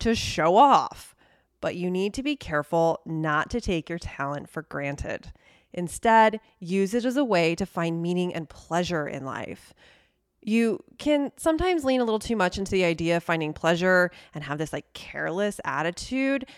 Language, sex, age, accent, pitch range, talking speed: English, female, 20-39, American, 165-205 Hz, 175 wpm